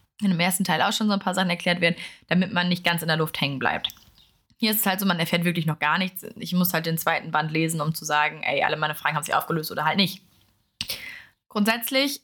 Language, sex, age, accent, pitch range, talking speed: German, female, 20-39, German, 175-220 Hz, 260 wpm